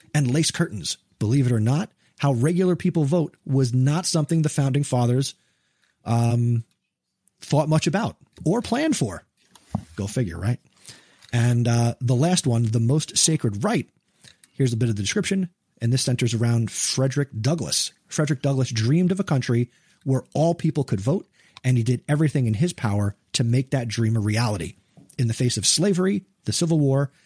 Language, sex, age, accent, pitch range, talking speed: English, male, 30-49, American, 115-150 Hz, 175 wpm